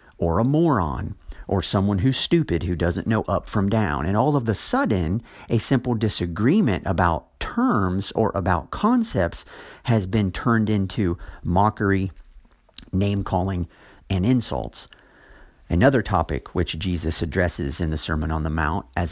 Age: 50-69